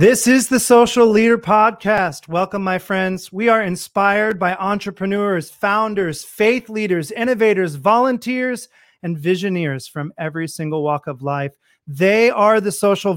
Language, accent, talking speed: English, American, 140 wpm